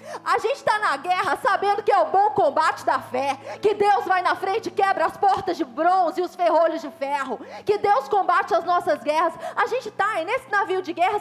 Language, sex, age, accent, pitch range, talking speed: Portuguese, female, 20-39, Brazilian, 355-420 Hz, 225 wpm